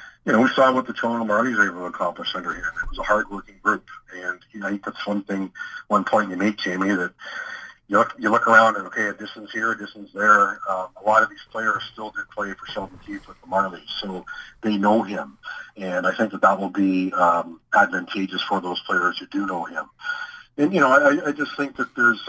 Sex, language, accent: male, English, American